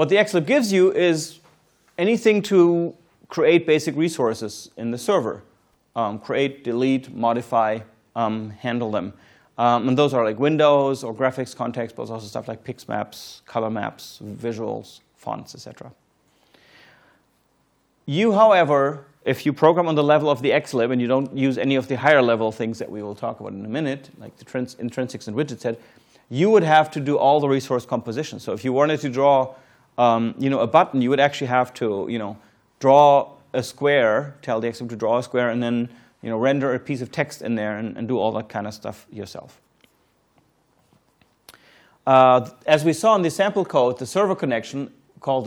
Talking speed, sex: 195 wpm, male